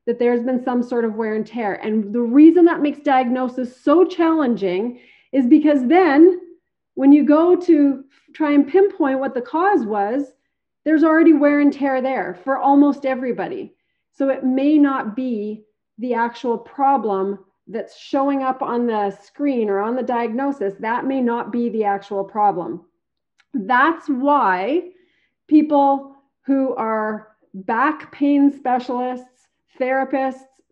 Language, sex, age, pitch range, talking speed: English, female, 40-59, 230-285 Hz, 145 wpm